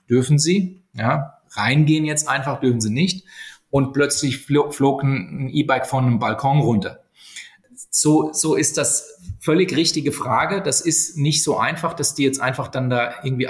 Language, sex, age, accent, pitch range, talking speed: German, male, 30-49, German, 125-155 Hz, 170 wpm